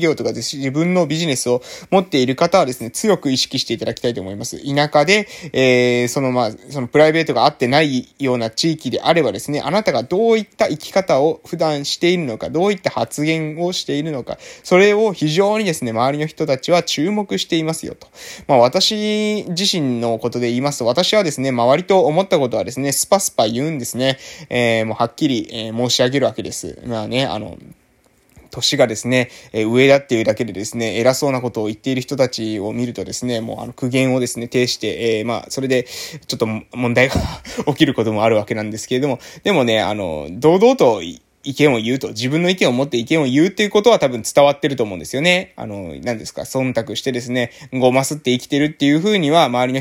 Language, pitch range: Japanese, 125-165 Hz